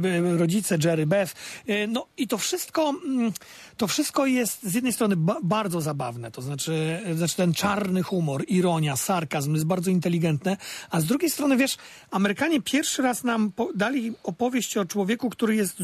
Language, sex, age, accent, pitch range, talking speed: Polish, male, 40-59, native, 180-235 Hz, 155 wpm